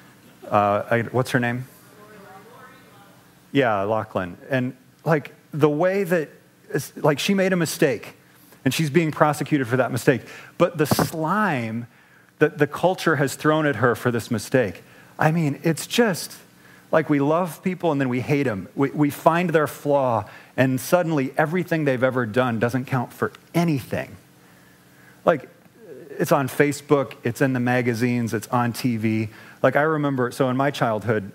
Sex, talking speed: male, 155 wpm